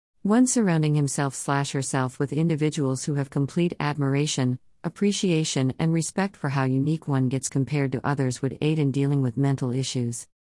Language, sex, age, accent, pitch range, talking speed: English, female, 50-69, American, 130-155 Hz, 165 wpm